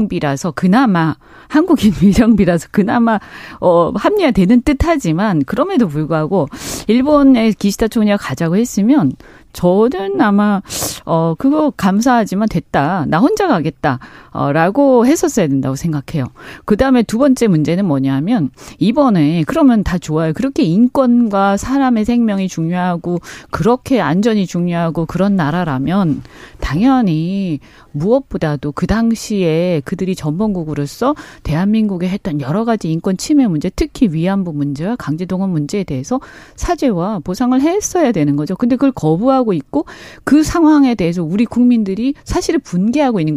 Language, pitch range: Korean, 165-250 Hz